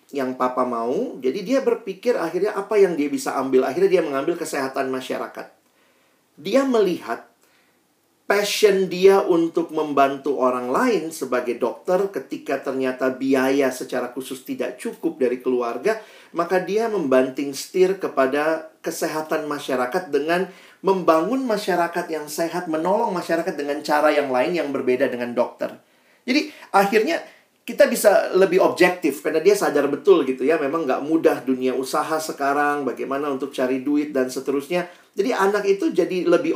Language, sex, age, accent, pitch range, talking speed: Indonesian, male, 40-59, native, 135-205 Hz, 145 wpm